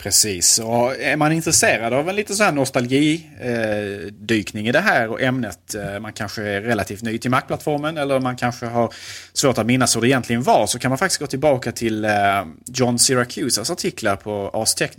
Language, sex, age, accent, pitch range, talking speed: Swedish, male, 30-49, Norwegian, 100-125 Hz, 190 wpm